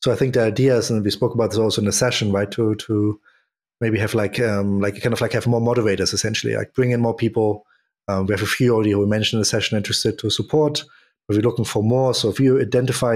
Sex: male